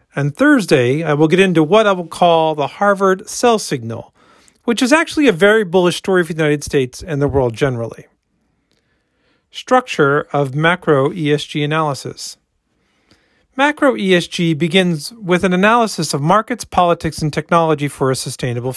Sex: male